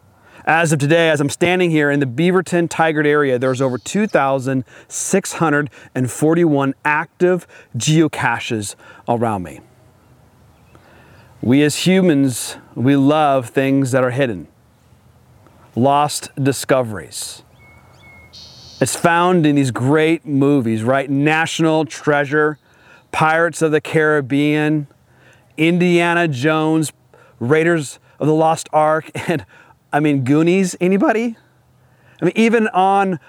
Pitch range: 130-165 Hz